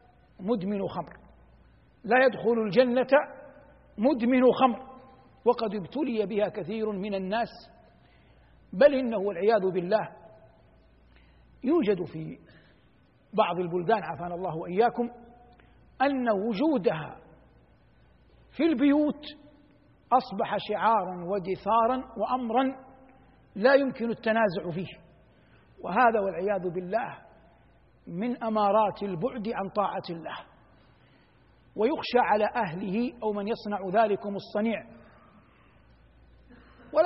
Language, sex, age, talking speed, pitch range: Arabic, male, 60-79, 85 wpm, 185-235 Hz